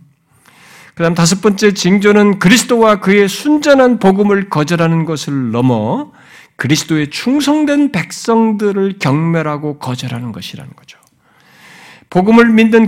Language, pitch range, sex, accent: Korean, 165-220 Hz, male, native